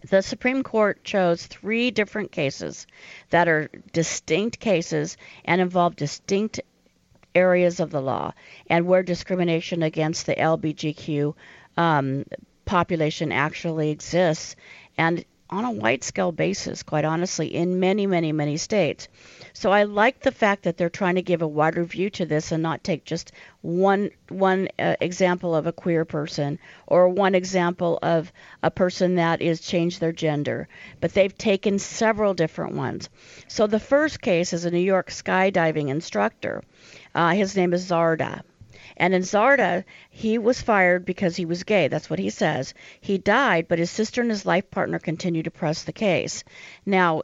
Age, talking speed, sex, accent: 50-69, 165 wpm, female, American